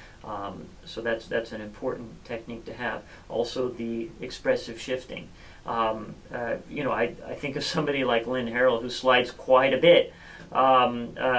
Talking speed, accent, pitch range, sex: 165 wpm, American, 125-145 Hz, male